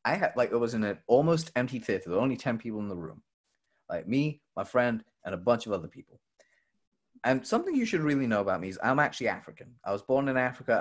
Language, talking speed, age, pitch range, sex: English, 250 wpm, 30-49, 95-130 Hz, male